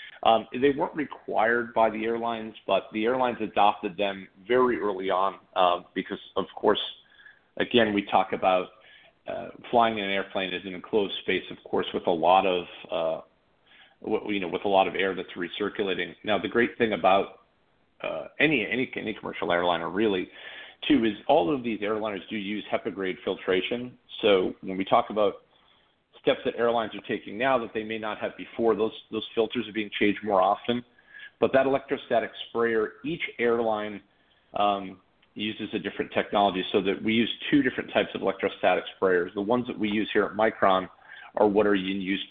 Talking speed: 185 wpm